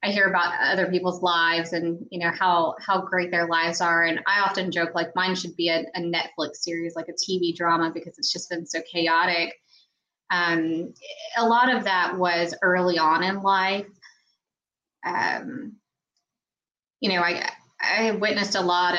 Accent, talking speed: American, 175 wpm